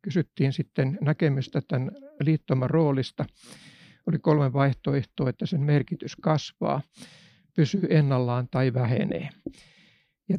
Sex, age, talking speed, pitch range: male, 60-79, 105 wpm, 135-165 Hz